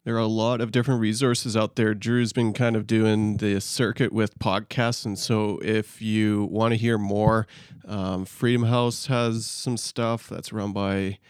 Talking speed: 185 wpm